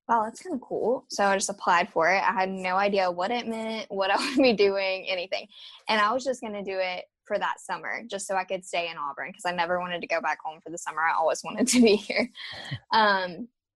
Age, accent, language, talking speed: 10-29, American, English, 260 wpm